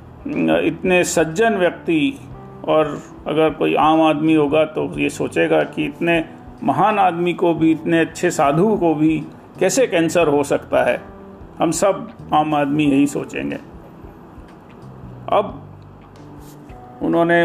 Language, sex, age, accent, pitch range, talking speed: Hindi, male, 40-59, native, 145-180 Hz, 125 wpm